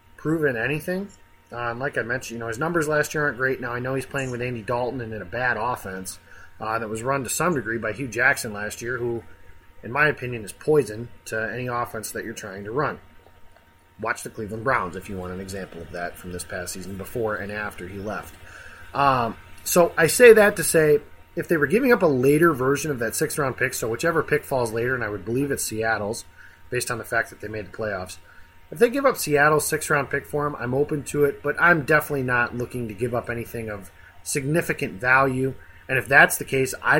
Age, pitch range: 30-49, 110-145 Hz